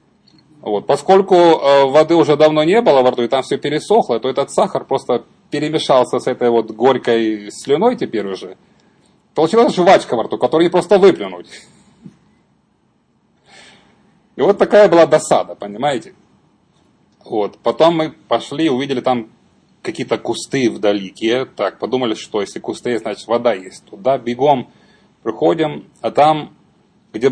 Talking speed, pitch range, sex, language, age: 135 wpm, 115-160 Hz, male, Russian, 30-49